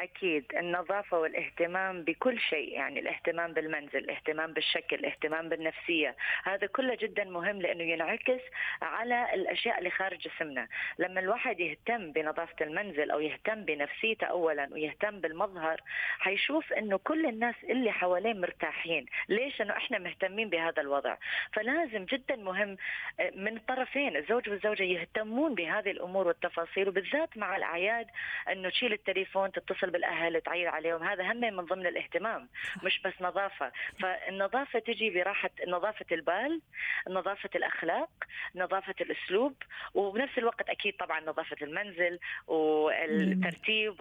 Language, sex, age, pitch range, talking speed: Arabic, female, 30-49, 170-220 Hz, 125 wpm